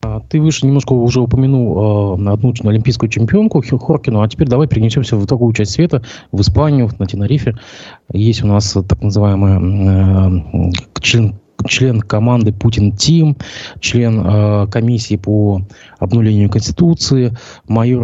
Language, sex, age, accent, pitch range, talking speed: Russian, male, 20-39, native, 100-120 Hz, 140 wpm